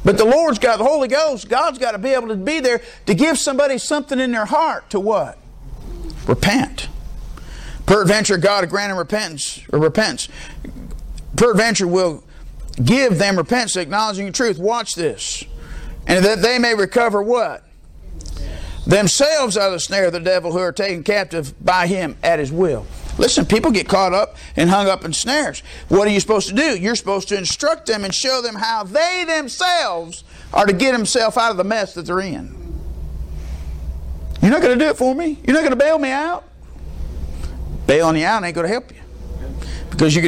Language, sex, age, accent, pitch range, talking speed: English, male, 50-69, American, 160-230 Hz, 190 wpm